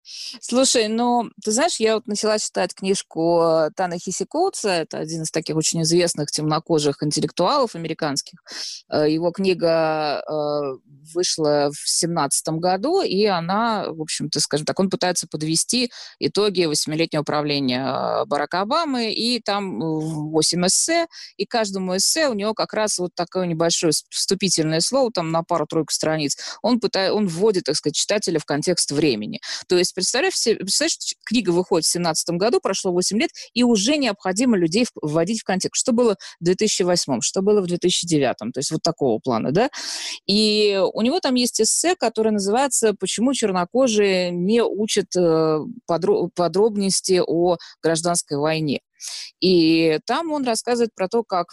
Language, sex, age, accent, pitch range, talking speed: Russian, female, 20-39, native, 160-220 Hz, 145 wpm